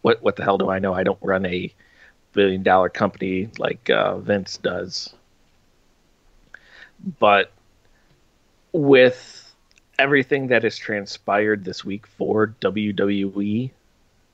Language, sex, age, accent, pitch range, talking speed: English, male, 30-49, American, 95-115 Hz, 115 wpm